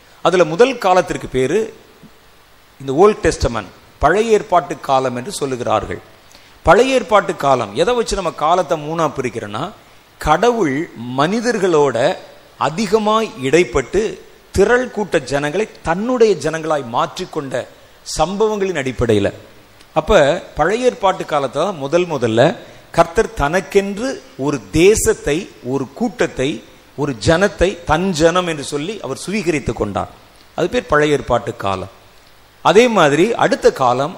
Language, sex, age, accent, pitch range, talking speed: Tamil, male, 40-59, native, 130-210 Hz, 100 wpm